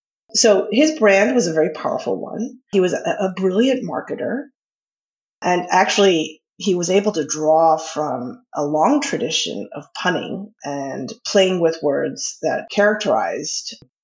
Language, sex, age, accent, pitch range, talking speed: English, female, 30-49, American, 160-225 Hz, 140 wpm